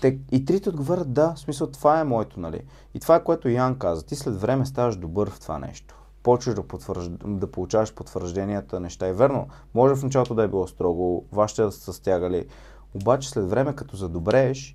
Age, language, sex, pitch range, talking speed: 30-49, Bulgarian, male, 105-130 Hz, 195 wpm